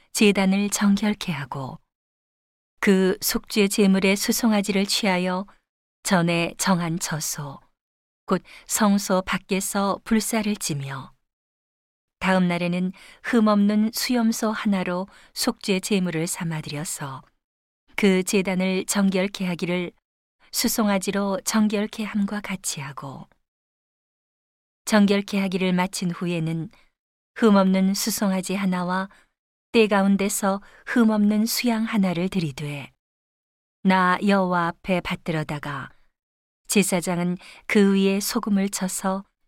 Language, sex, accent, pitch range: Korean, female, native, 175-205 Hz